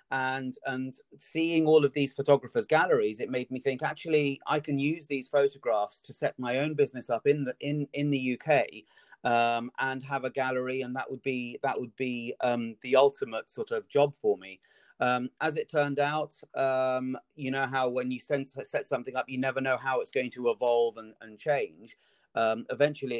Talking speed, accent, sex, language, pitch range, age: 200 wpm, British, male, English, 120-150 Hz, 30-49